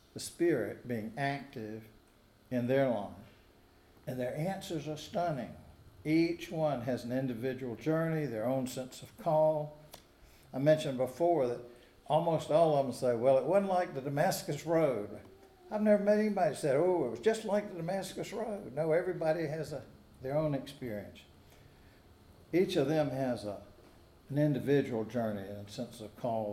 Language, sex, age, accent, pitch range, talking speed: English, male, 60-79, American, 115-150 Hz, 165 wpm